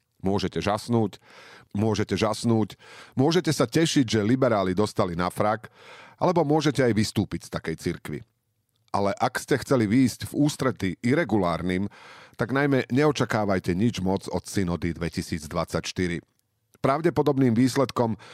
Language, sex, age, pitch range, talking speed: Slovak, male, 40-59, 95-120 Hz, 120 wpm